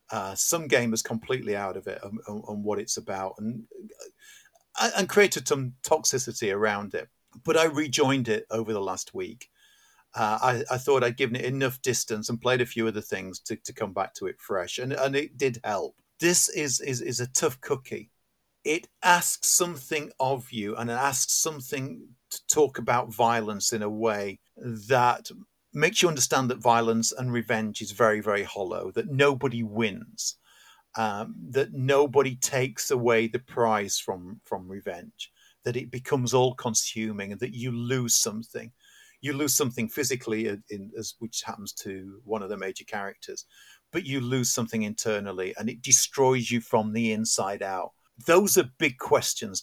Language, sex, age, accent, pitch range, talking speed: English, male, 50-69, British, 110-145 Hz, 175 wpm